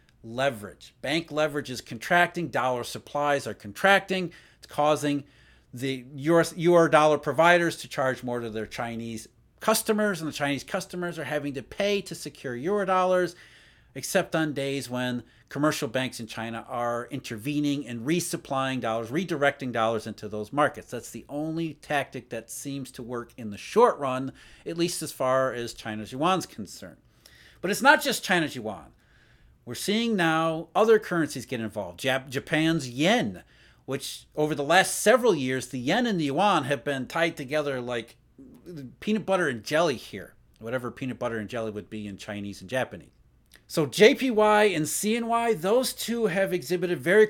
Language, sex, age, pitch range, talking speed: English, male, 40-59, 125-175 Hz, 165 wpm